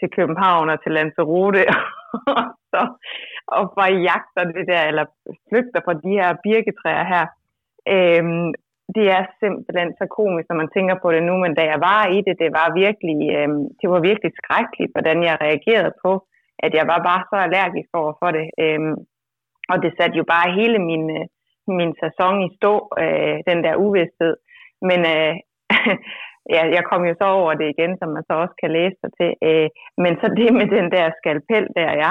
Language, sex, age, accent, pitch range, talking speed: Danish, female, 20-39, native, 160-190 Hz, 185 wpm